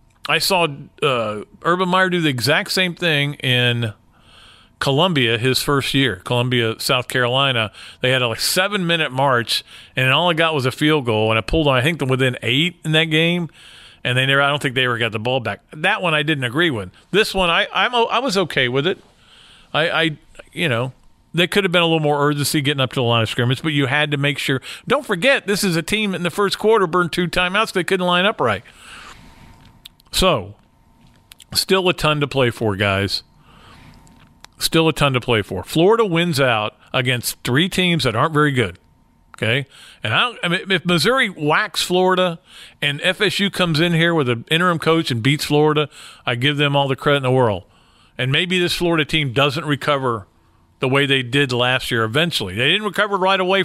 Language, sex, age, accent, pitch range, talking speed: English, male, 40-59, American, 125-175 Hz, 210 wpm